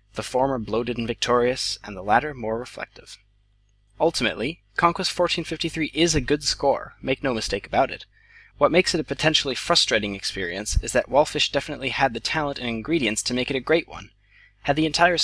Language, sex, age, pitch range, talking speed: English, male, 20-39, 105-145 Hz, 195 wpm